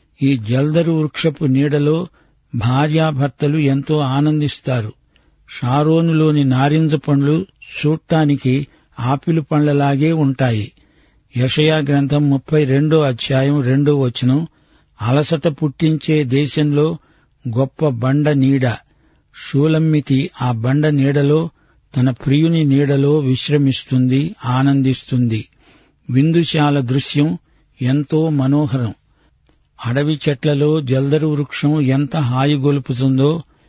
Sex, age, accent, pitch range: male, 50-69, native, 130-150 Hz